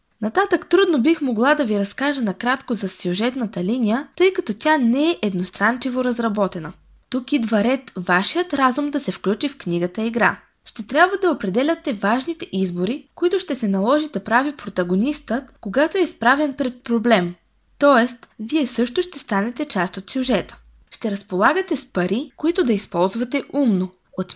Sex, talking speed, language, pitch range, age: female, 160 wpm, Bulgarian, 195-290 Hz, 20-39